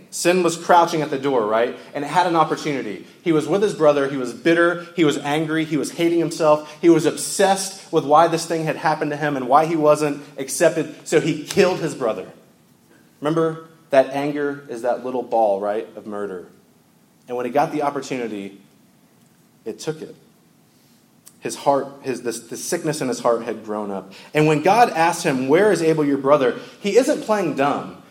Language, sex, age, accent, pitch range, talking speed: English, male, 30-49, American, 135-175 Hz, 195 wpm